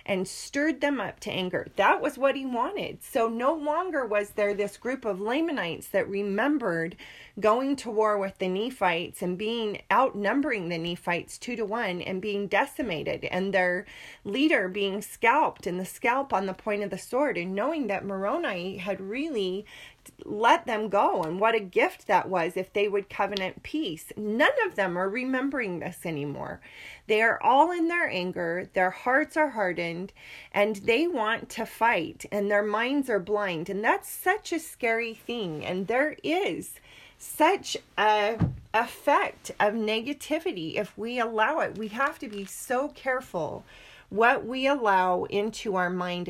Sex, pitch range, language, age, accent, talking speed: female, 190-260 Hz, English, 30-49, American, 170 wpm